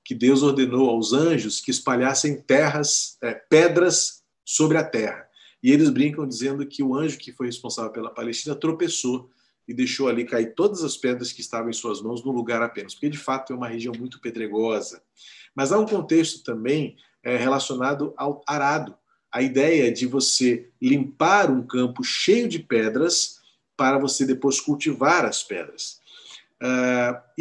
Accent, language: Brazilian, Portuguese